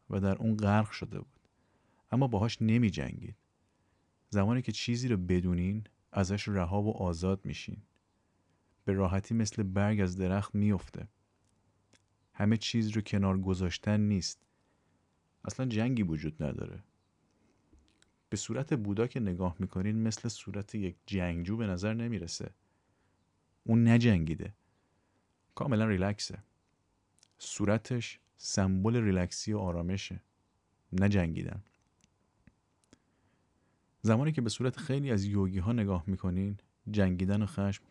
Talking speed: 115 wpm